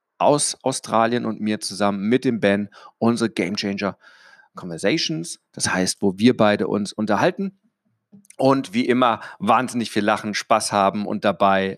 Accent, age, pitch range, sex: German, 40-59, 100-130 Hz, male